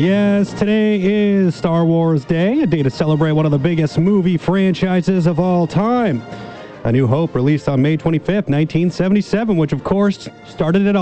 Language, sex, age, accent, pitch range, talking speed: English, male, 30-49, American, 145-190 Hz, 175 wpm